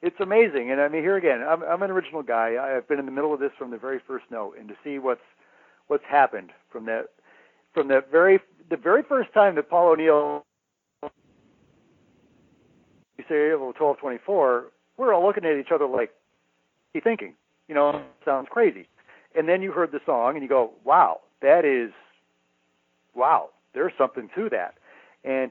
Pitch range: 130-170 Hz